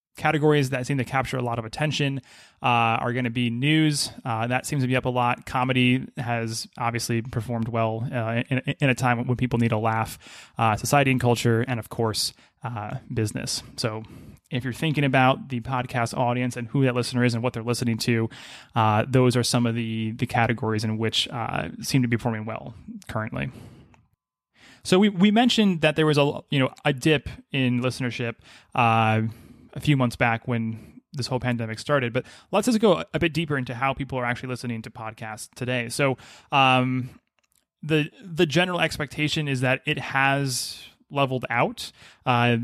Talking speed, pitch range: 190 wpm, 120-140 Hz